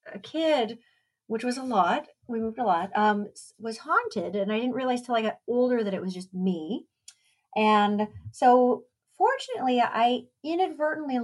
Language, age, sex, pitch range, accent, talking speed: English, 40-59, female, 195-250 Hz, American, 165 wpm